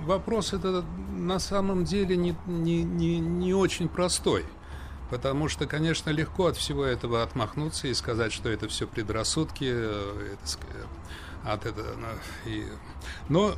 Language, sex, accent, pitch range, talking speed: Russian, male, native, 115-175 Hz, 105 wpm